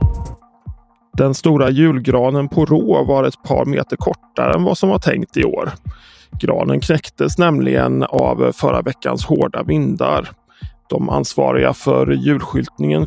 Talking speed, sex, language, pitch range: 135 wpm, male, Swedish, 90-150 Hz